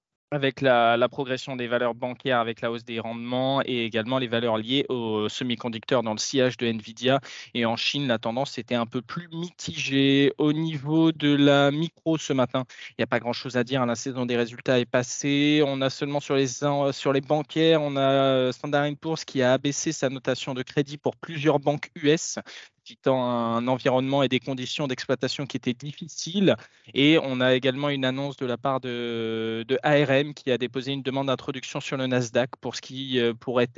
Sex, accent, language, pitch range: male, French, French, 125-145 Hz